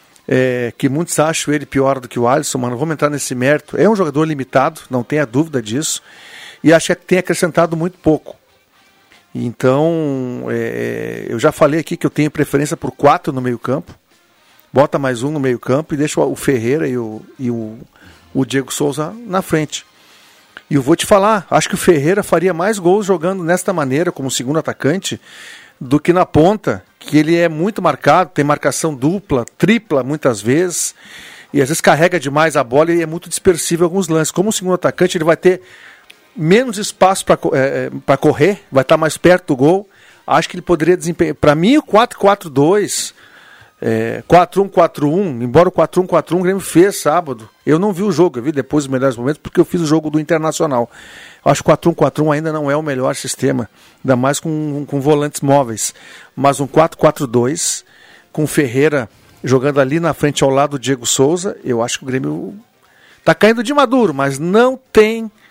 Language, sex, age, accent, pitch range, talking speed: Portuguese, male, 50-69, Brazilian, 140-180 Hz, 195 wpm